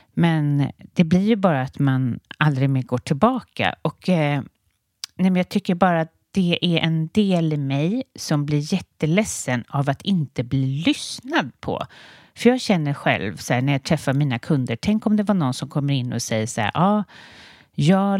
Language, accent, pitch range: English, Swedish, 130-185 Hz